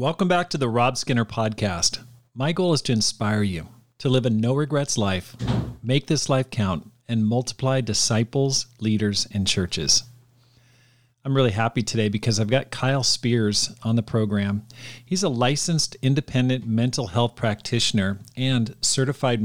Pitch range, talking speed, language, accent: 110-130 Hz, 155 wpm, English, American